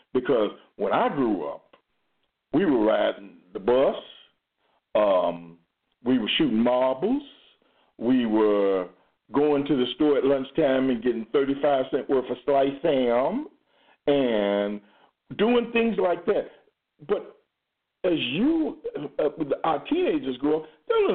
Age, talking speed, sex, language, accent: 50-69, 130 wpm, male, English, American